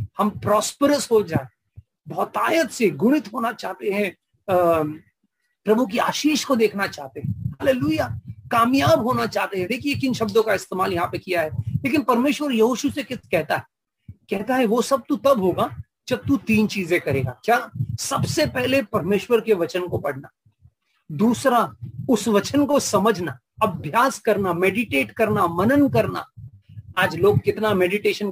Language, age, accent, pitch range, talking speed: English, 40-59, Indian, 175-240 Hz, 115 wpm